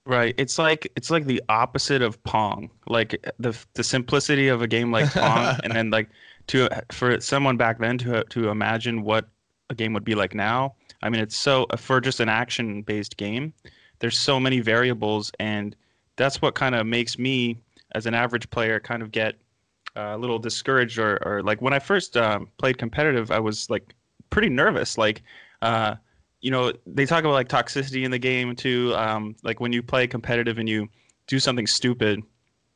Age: 20-39